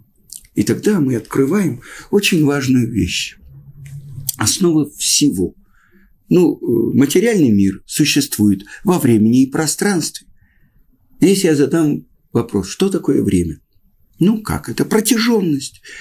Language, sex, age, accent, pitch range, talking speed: Russian, male, 50-69, native, 105-165 Hz, 105 wpm